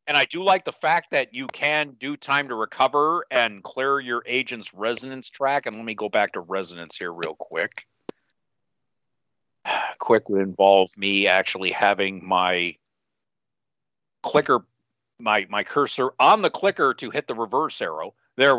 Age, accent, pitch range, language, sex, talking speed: 50-69, American, 105-145 Hz, English, male, 160 wpm